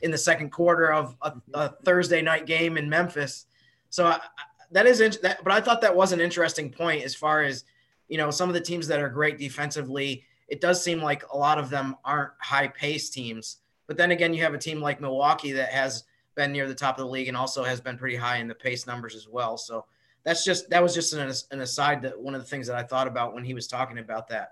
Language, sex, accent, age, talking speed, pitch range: English, male, American, 20-39, 255 wpm, 130-155 Hz